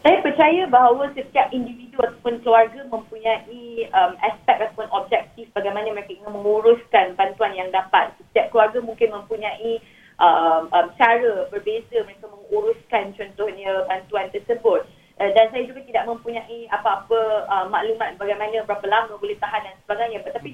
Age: 20-39